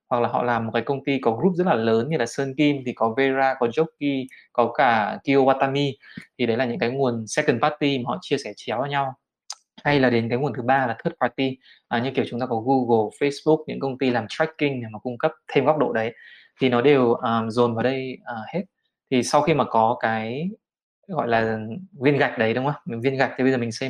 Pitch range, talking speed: 120-140 Hz, 255 wpm